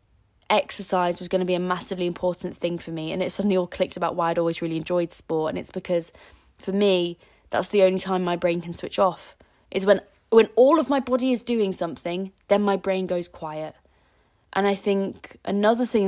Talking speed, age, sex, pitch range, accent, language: 215 wpm, 20-39, female, 165-195 Hz, British, English